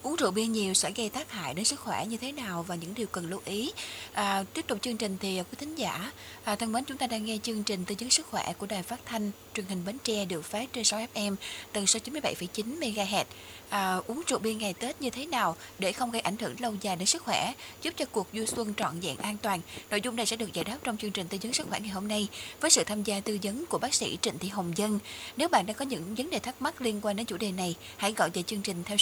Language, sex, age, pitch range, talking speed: Vietnamese, female, 20-39, 195-235 Hz, 285 wpm